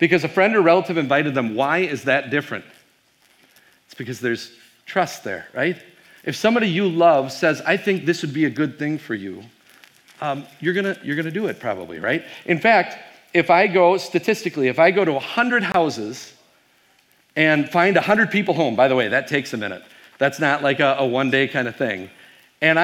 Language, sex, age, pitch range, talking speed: English, male, 40-59, 140-190 Hz, 200 wpm